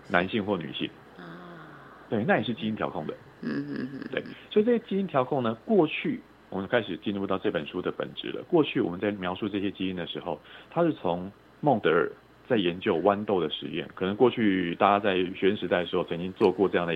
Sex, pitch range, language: male, 90-130 Hz, Chinese